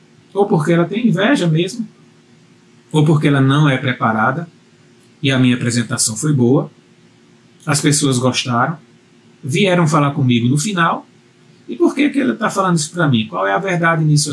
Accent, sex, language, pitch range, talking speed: Brazilian, male, Portuguese, 130-165 Hz, 170 wpm